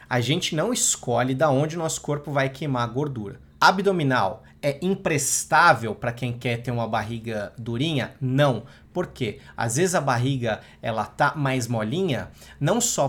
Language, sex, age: Portuguese, male, 30-49